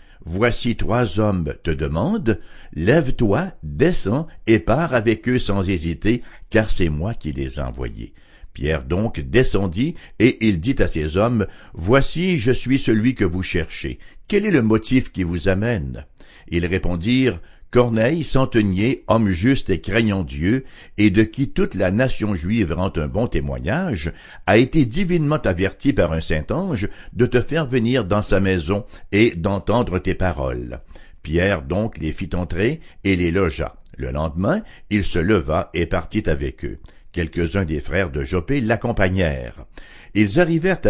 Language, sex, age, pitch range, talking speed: English, male, 60-79, 85-125 Hz, 155 wpm